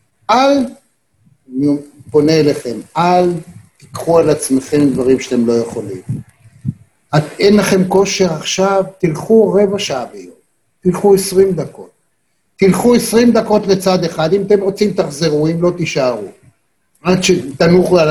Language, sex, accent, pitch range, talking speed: Hebrew, male, native, 145-200 Hz, 125 wpm